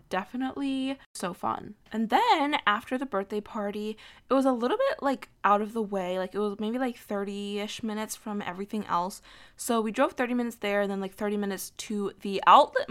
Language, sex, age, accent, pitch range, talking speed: English, female, 10-29, American, 200-235 Hz, 205 wpm